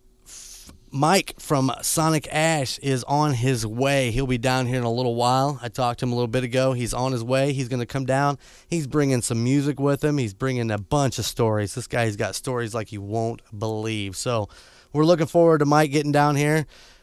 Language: English